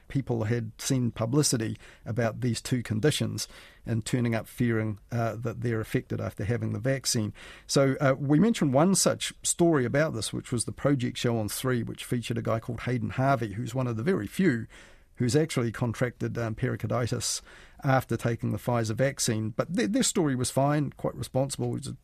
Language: English